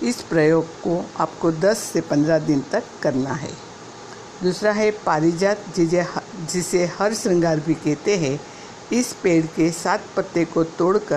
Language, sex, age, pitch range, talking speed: Hindi, female, 60-79, 165-195 Hz, 150 wpm